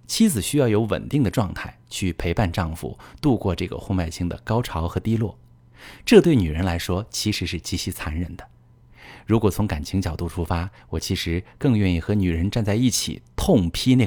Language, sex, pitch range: Chinese, male, 90-120 Hz